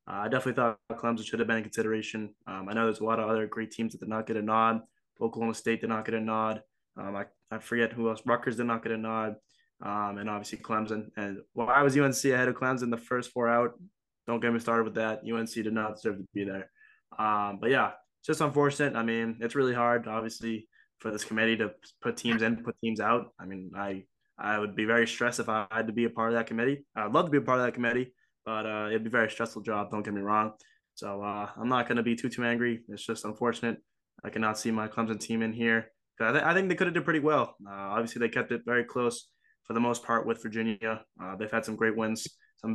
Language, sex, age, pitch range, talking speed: English, male, 20-39, 110-120 Hz, 265 wpm